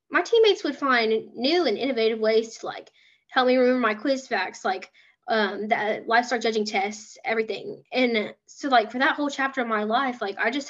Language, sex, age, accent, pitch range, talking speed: English, female, 10-29, American, 220-270 Hz, 200 wpm